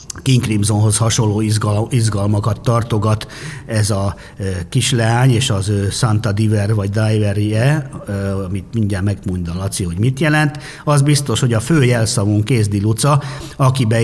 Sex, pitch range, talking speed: male, 100-125 Hz, 135 wpm